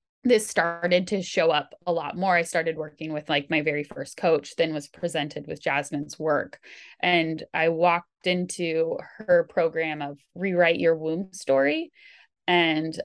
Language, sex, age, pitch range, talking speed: English, female, 20-39, 155-185 Hz, 160 wpm